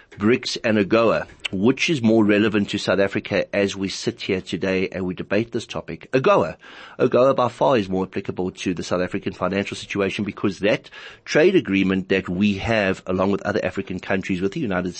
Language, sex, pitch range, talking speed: English, male, 95-115 Hz, 190 wpm